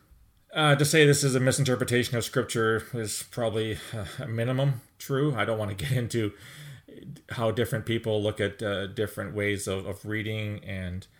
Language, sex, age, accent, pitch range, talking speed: English, male, 30-49, American, 100-125 Hz, 170 wpm